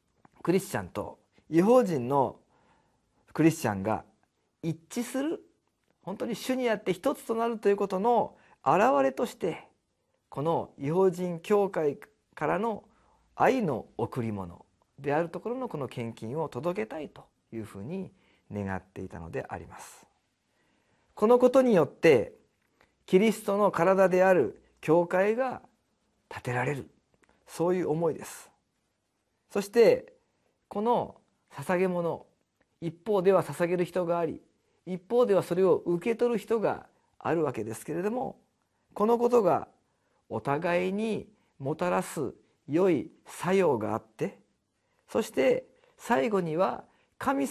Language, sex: Japanese, male